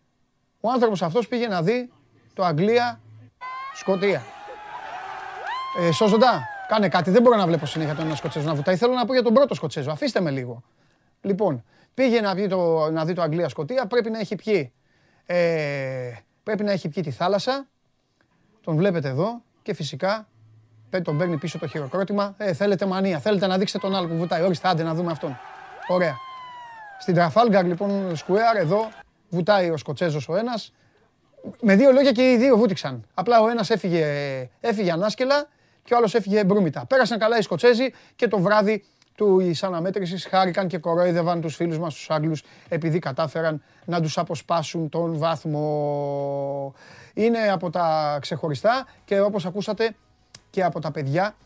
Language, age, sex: Greek, 30-49, male